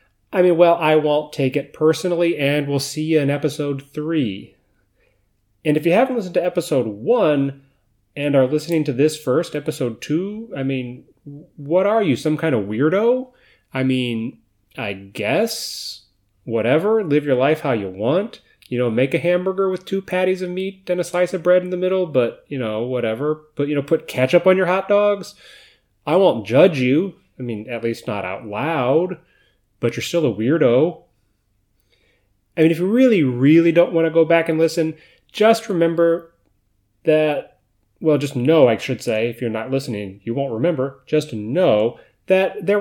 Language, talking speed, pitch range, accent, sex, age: English, 185 wpm, 120-170 Hz, American, male, 30-49